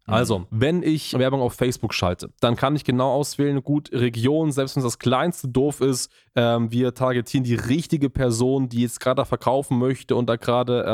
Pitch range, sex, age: 125-150 Hz, male, 20-39